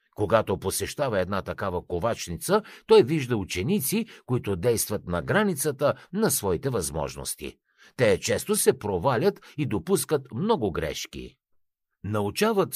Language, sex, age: Bulgarian, male, 60-79